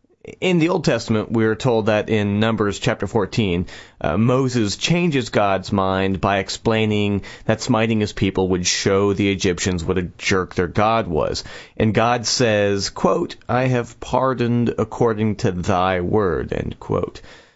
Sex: male